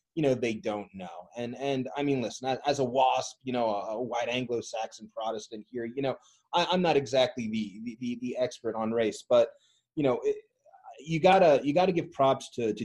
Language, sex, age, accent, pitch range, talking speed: English, male, 20-39, American, 110-135 Hz, 215 wpm